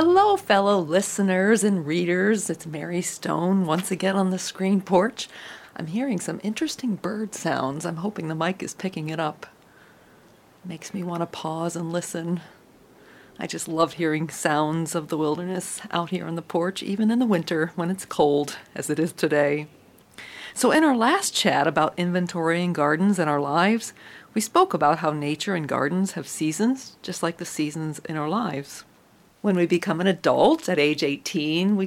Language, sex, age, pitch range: English, female, 40-59, 150-190 Hz